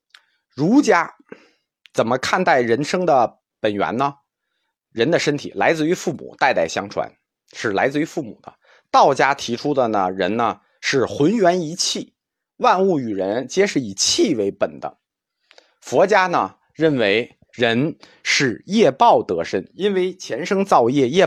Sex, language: male, Chinese